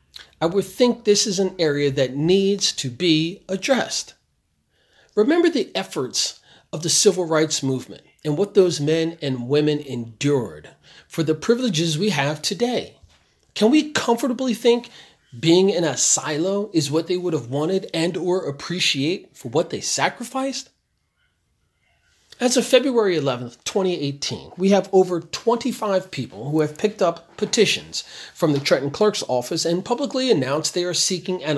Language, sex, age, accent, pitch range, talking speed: English, male, 40-59, American, 145-210 Hz, 155 wpm